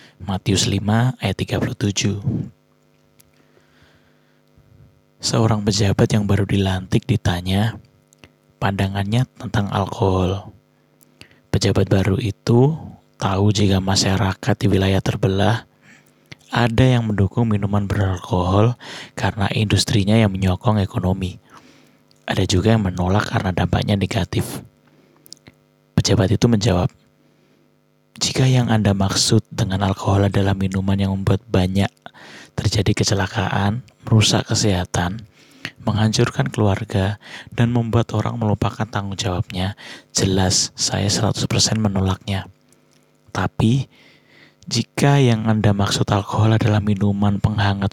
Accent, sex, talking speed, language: native, male, 100 wpm, Indonesian